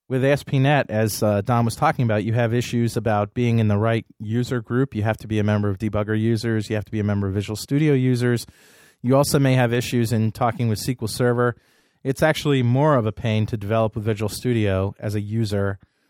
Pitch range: 105-145 Hz